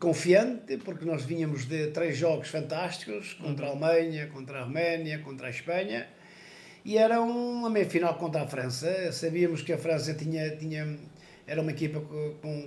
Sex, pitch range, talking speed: male, 155-190 Hz, 165 wpm